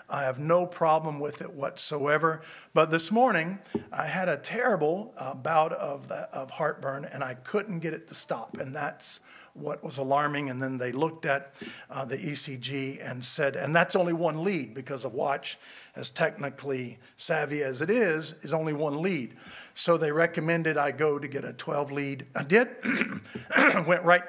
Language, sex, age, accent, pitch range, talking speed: English, male, 50-69, American, 140-165 Hz, 185 wpm